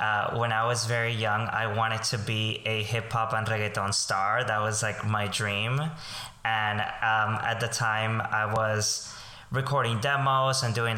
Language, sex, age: English, male, 20-39